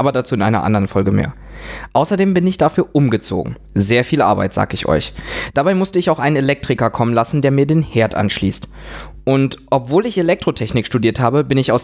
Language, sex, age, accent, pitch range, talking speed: German, male, 20-39, German, 110-145 Hz, 205 wpm